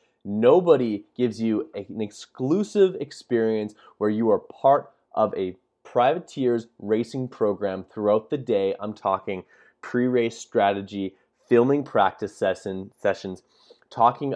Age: 20-39